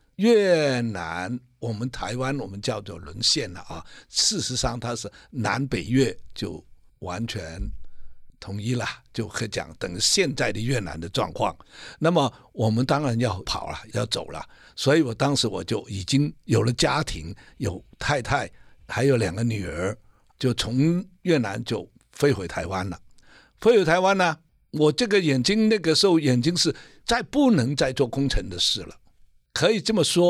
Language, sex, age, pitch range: Chinese, male, 60-79, 120-175 Hz